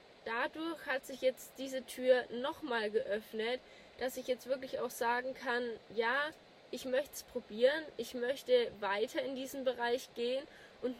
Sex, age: female, 10-29